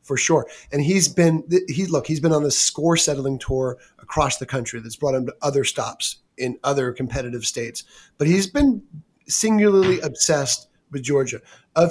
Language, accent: English, American